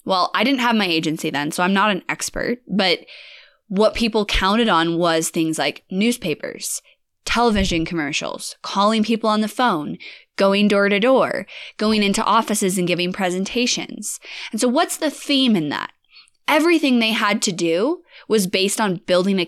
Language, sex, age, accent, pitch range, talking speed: English, female, 20-39, American, 175-235 Hz, 170 wpm